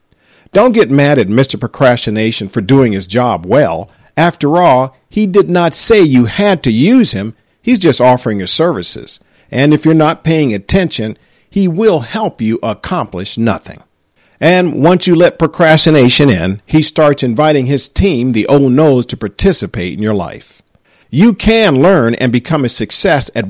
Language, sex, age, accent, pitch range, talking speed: English, male, 50-69, American, 120-175 Hz, 170 wpm